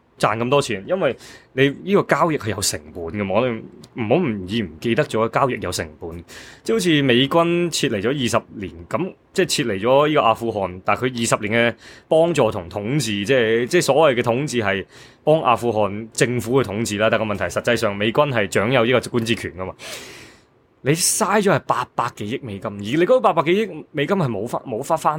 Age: 20-39